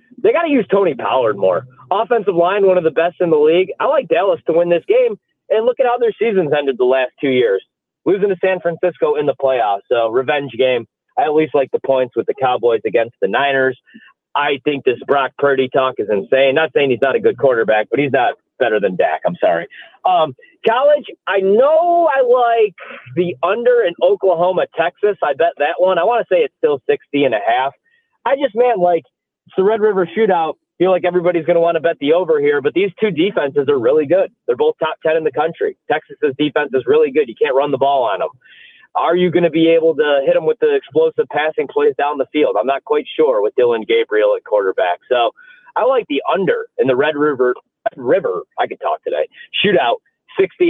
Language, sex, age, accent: English, male, 40-59, American